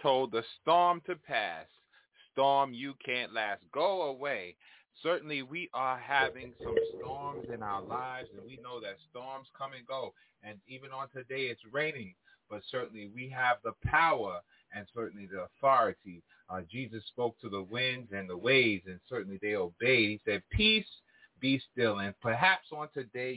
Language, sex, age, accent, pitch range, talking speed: English, male, 30-49, American, 110-140 Hz, 170 wpm